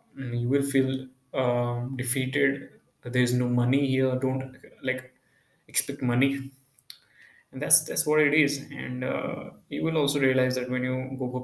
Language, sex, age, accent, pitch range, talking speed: English, male, 20-39, Indian, 125-135 Hz, 165 wpm